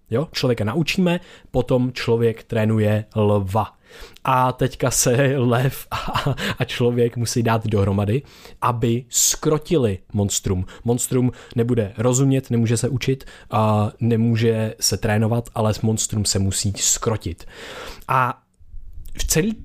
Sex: male